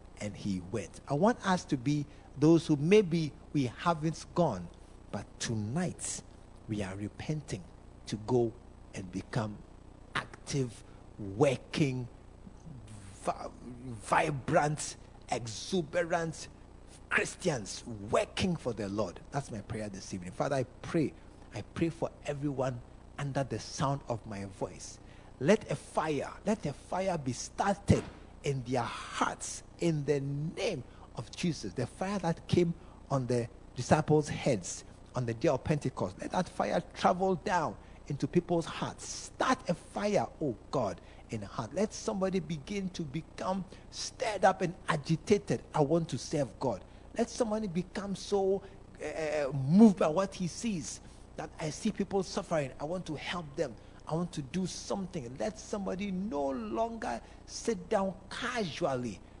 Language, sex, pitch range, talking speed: English, male, 110-175 Hz, 140 wpm